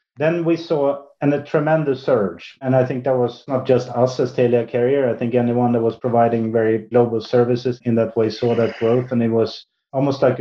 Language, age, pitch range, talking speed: English, 30-49, 120-135 Hz, 220 wpm